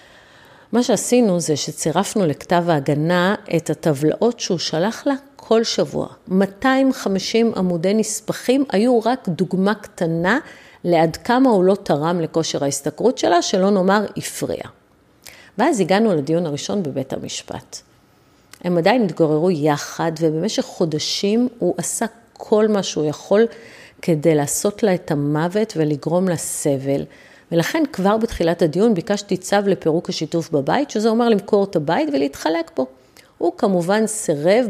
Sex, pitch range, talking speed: female, 160-225 Hz, 130 wpm